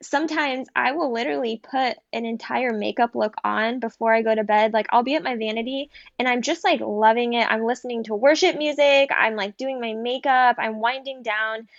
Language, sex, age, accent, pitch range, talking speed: English, female, 10-29, American, 220-265 Hz, 205 wpm